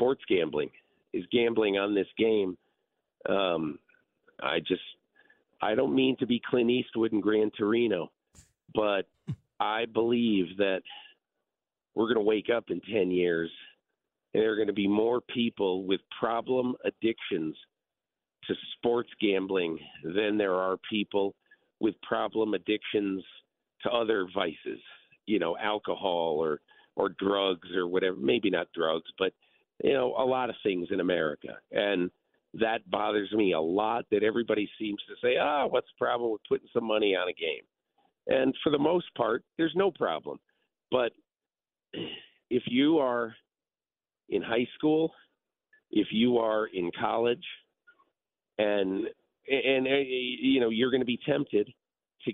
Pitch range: 100-135 Hz